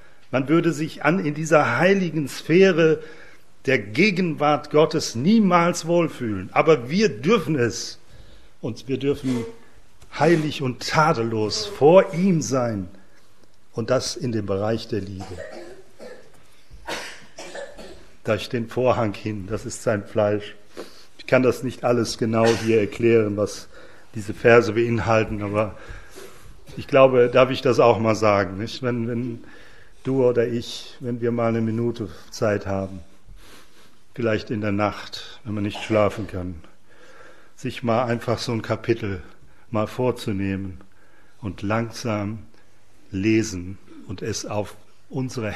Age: 40-59